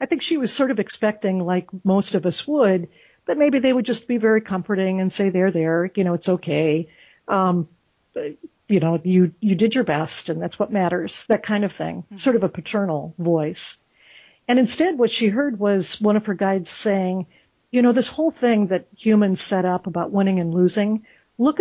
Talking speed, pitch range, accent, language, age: 205 wpm, 180-230 Hz, American, English, 50-69